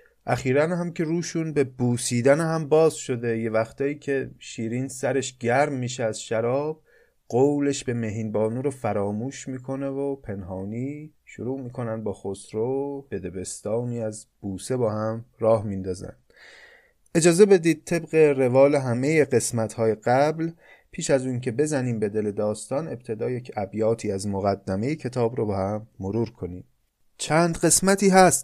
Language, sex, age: Persian, male, 30-49